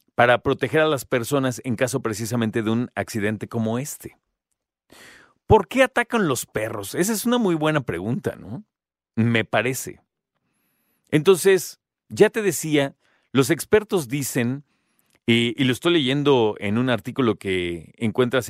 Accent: Mexican